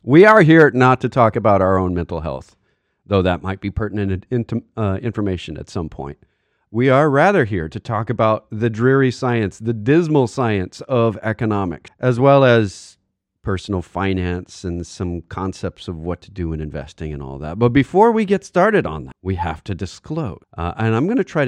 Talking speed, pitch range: 195 wpm, 95-130 Hz